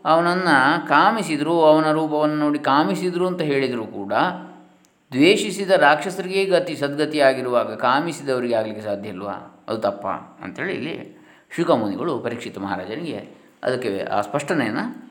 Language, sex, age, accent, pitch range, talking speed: Kannada, male, 20-39, native, 115-170 Hz, 105 wpm